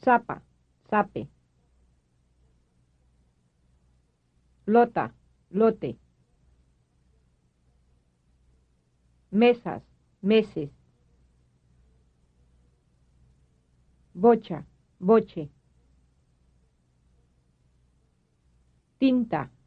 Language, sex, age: English, female, 50-69